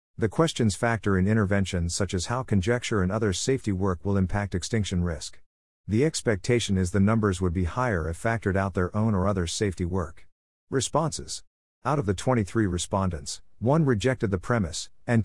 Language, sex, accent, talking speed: English, male, American, 175 wpm